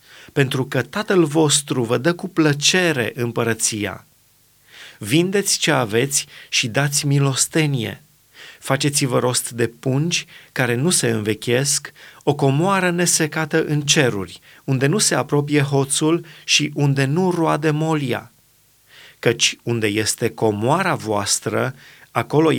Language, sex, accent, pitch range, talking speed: Romanian, male, native, 120-155 Hz, 115 wpm